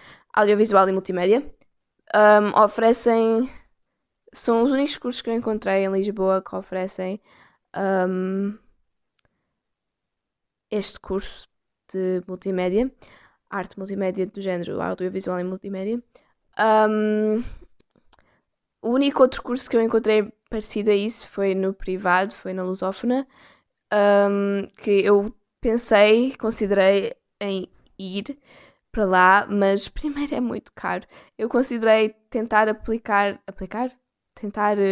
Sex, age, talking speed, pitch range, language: female, 10-29, 105 wpm, 195-230 Hz, Portuguese